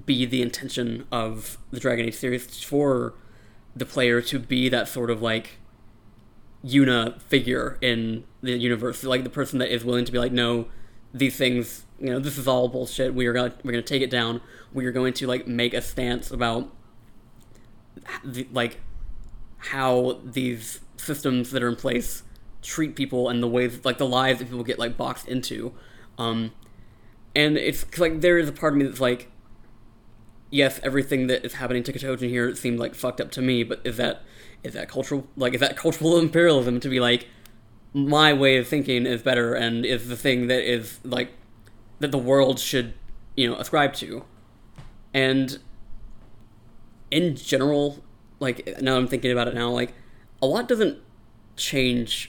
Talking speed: 180 wpm